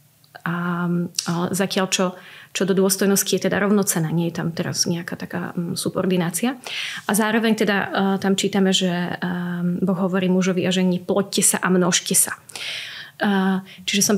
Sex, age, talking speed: female, 30-49, 155 wpm